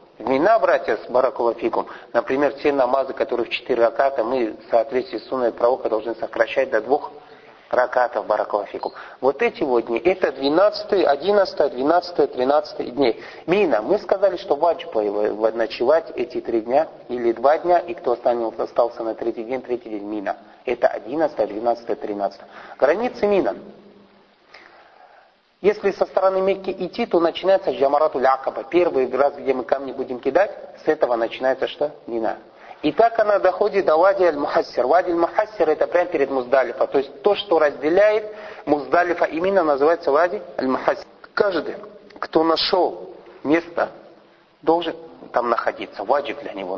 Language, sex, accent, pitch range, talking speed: Russian, male, native, 130-195 Hz, 150 wpm